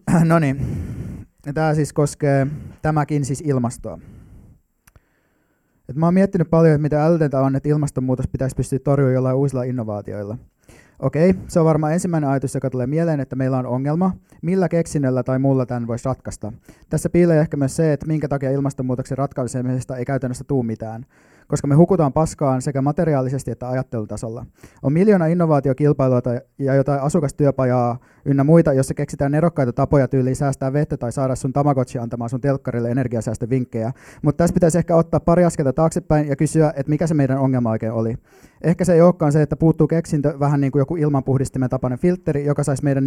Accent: native